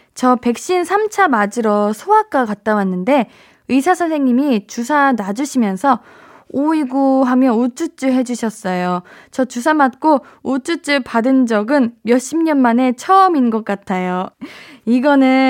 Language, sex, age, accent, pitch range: Korean, female, 20-39, native, 215-290 Hz